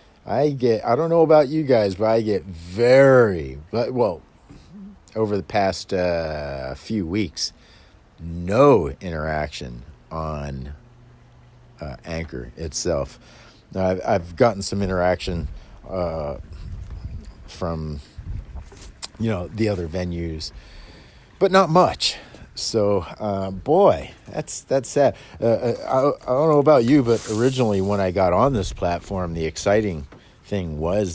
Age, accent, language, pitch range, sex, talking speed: 50-69, American, English, 80-120 Hz, male, 125 wpm